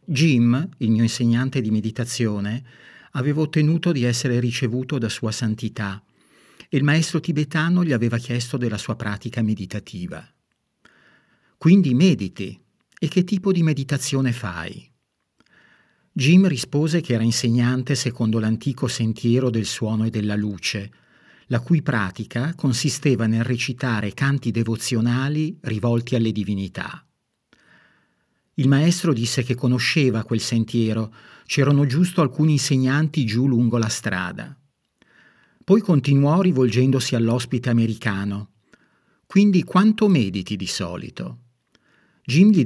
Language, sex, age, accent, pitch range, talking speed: Italian, male, 50-69, native, 115-150 Hz, 120 wpm